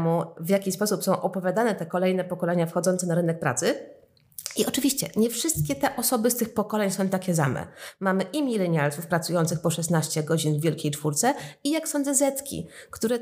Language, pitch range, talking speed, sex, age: Polish, 170-210 Hz, 175 wpm, female, 30-49